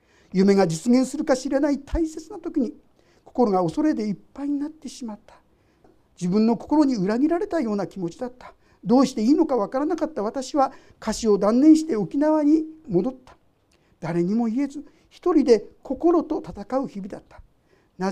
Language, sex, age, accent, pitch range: Japanese, male, 50-69, native, 215-305 Hz